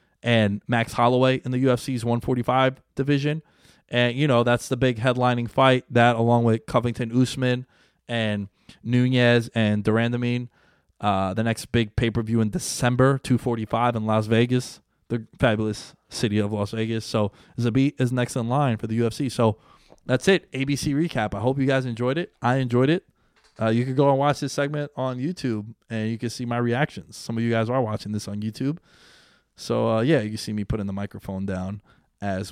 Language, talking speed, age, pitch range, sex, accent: English, 185 wpm, 20-39, 110-130 Hz, male, American